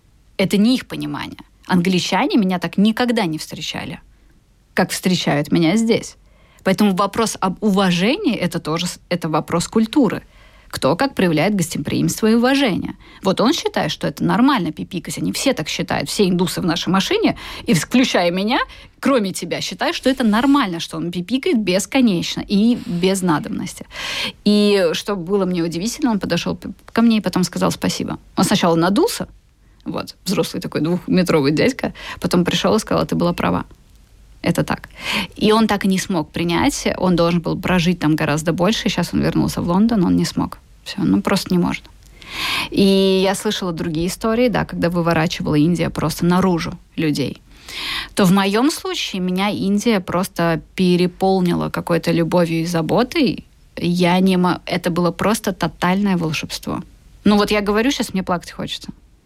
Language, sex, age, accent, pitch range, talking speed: Russian, female, 20-39, native, 170-210 Hz, 155 wpm